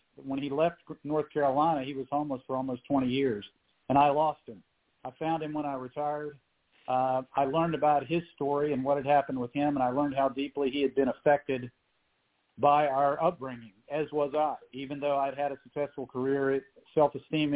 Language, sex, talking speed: English, male, 195 wpm